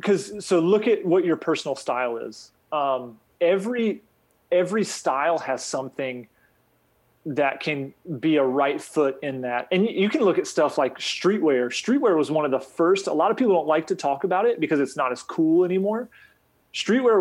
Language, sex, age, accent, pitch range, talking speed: English, male, 30-49, American, 135-175 Hz, 190 wpm